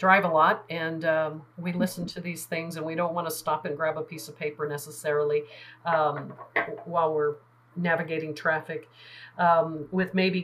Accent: American